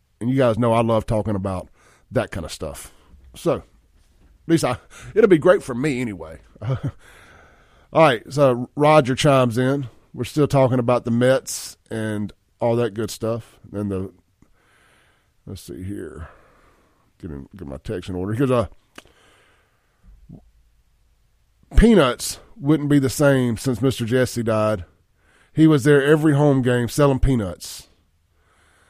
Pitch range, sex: 90-145 Hz, male